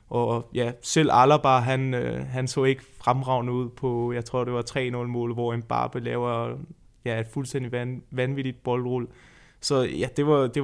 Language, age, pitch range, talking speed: Danish, 20-39, 125-145 Hz, 180 wpm